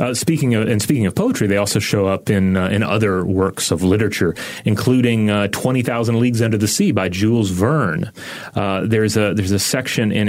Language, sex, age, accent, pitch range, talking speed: English, male, 30-49, American, 95-125 Hz, 210 wpm